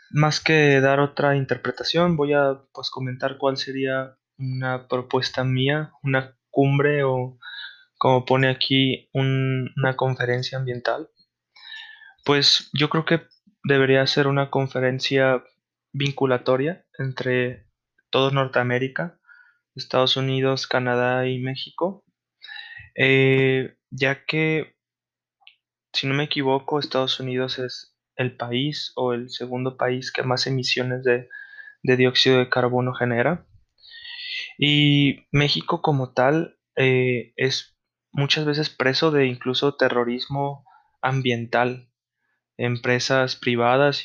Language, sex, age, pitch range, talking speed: English, male, 20-39, 125-140 Hz, 110 wpm